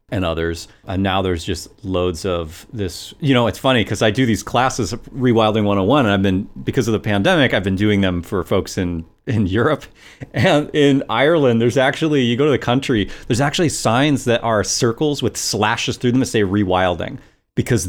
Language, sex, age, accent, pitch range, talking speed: English, male, 30-49, American, 95-120 Hz, 205 wpm